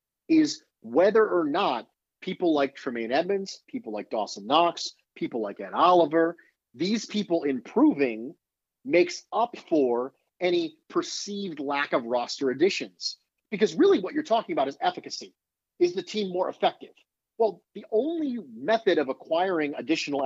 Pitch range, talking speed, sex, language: 160-255 Hz, 140 wpm, male, English